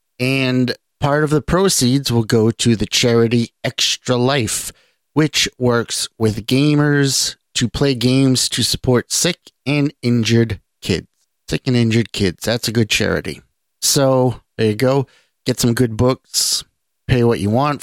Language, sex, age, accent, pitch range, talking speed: English, male, 50-69, American, 110-135 Hz, 150 wpm